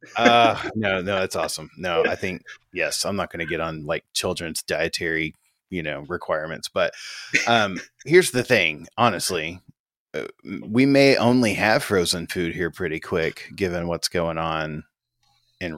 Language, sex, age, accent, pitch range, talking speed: English, male, 30-49, American, 85-125 Hz, 155 wpm